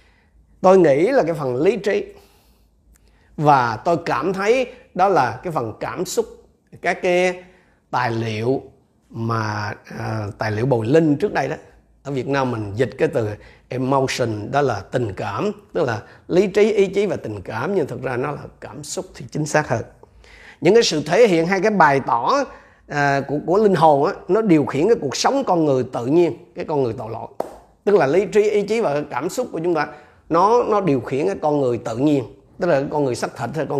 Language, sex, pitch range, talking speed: Vietnamese, male, 130-195 Hz, 210 wpm